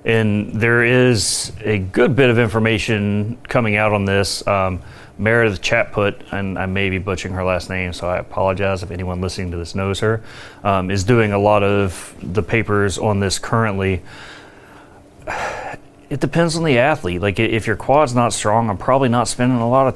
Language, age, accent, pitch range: English, 30-49, American, 100-120 Hz